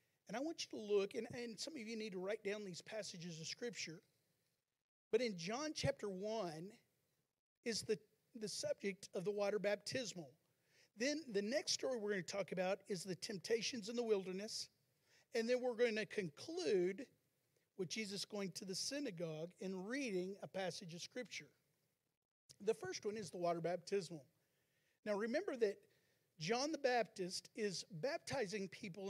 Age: 40-59